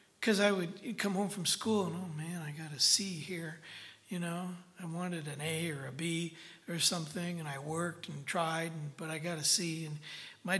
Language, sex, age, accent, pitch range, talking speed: English, male, 60-79, American, 160-205 Hz, 220 wpm